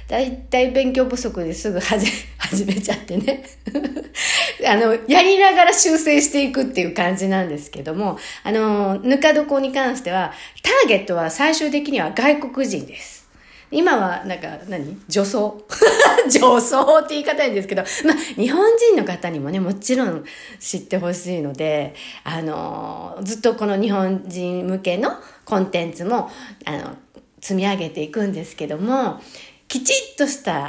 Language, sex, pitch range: Japanese, female, 180-270 Hz